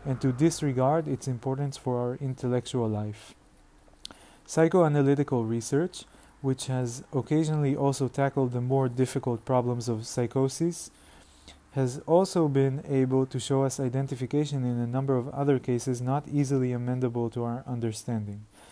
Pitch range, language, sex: 120-145 Hz, Hebrew, male